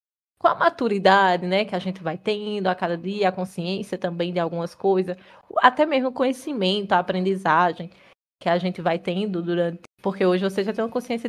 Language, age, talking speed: Portuguese, 20-39, 195 wpm